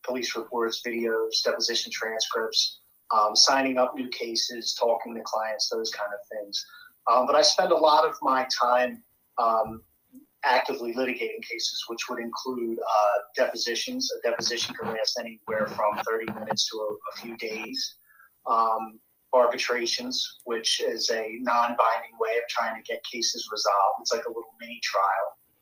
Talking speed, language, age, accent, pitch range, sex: 155 wpm, English, 30-49, American, 115-155 Hz, male